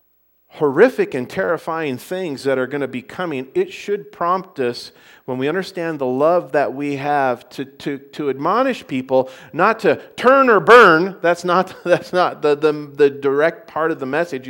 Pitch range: 120-155 Hz